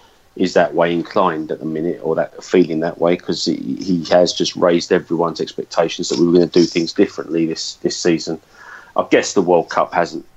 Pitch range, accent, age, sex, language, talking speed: 85-90 Hz, British, 30-49, male, English, 210 wpm